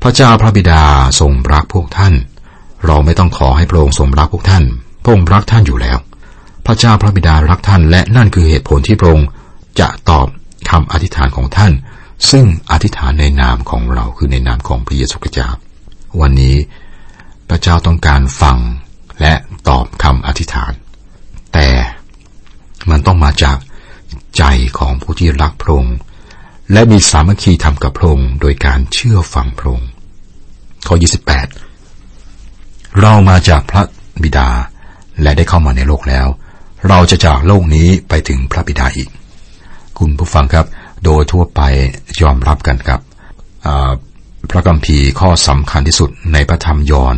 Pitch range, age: 70-90 Hz, 60-79